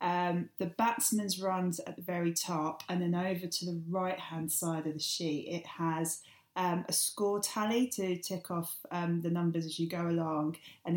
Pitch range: 165-195 Hz